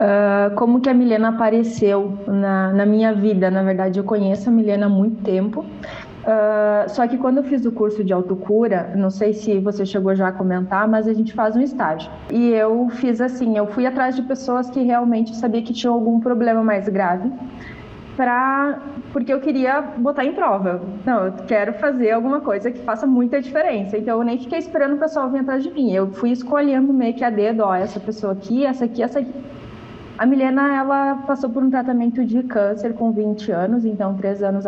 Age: 20-39